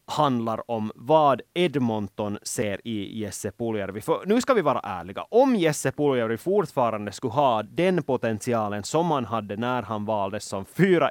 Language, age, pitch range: Swedish, 20-39, 110-150 Hz